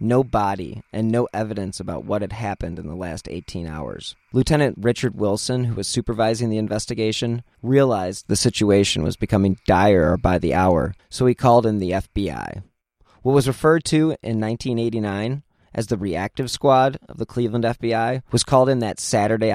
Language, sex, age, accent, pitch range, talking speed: English, male, 30-49, American, 95-120 Hz, 170 wpm